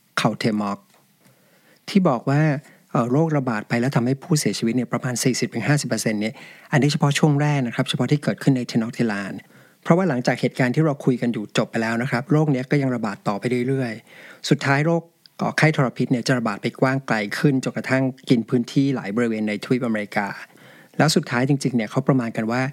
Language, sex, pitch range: English, male, 115-140 Hz